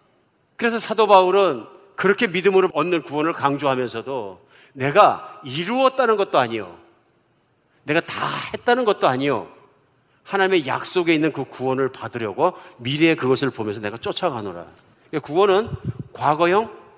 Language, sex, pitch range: Korean, male, 130-185 Hz